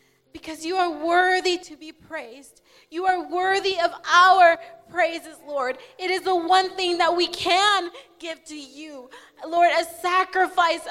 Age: 20-39